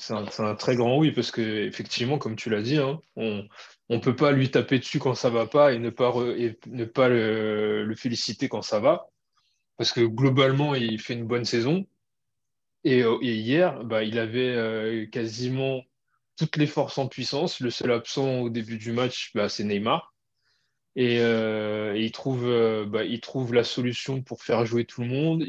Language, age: French, 20-39